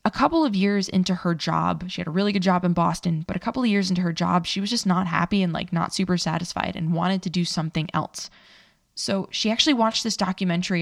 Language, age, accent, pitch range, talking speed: English, 20-39, American, 175-210 Hz, 250 wpm